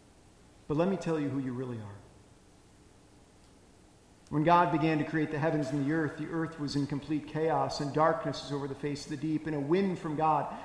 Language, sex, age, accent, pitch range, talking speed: English, male, 40-59, American, 135-165 Hz, 220 wpm